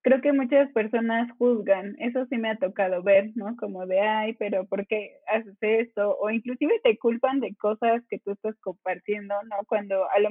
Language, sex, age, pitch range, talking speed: Spanish, female, 20-39, 200-240 Hz, 200 wpm